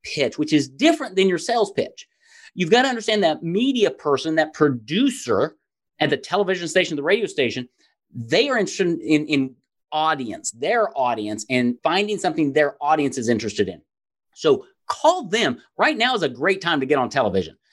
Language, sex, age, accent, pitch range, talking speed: English, male, 30-49, American, 150-215 Hz, 180 wpm